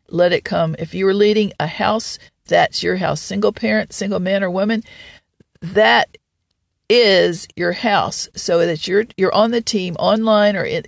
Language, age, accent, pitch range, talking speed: English, 50-69, American, 185-225 Hz, 175 wpm